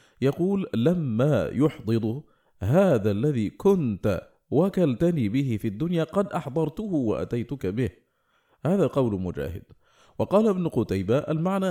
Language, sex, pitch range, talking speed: Arabic, male, 110-160 Hz, 110 wpm